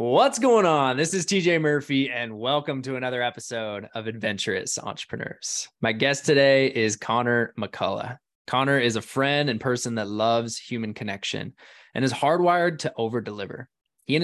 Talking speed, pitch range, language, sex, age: 160 wpm, 110-135 Hz, English, male, 20-39